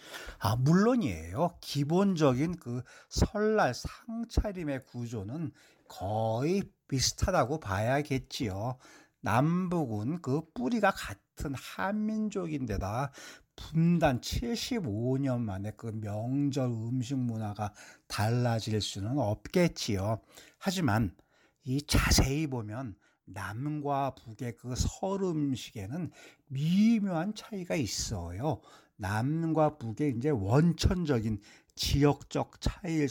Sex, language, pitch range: male, Korean, 115-160 Hz